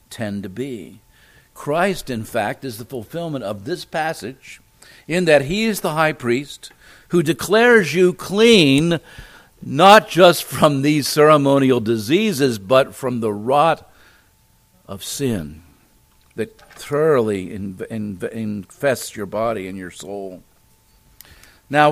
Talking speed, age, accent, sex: 120 wpm, 50-69, American, male